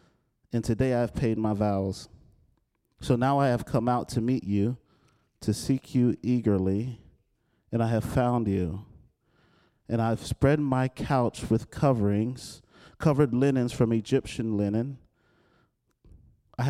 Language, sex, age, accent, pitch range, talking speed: English, male, 30-49, American, 105-130 Hz, 135 wpm